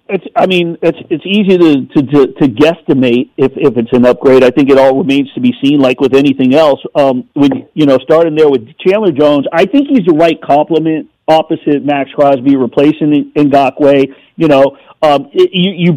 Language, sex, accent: English, male, American